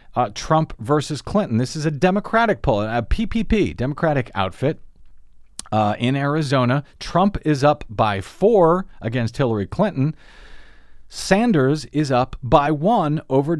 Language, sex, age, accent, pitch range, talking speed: English, male, 40-59, American, 120-155 Hz, 130 wpm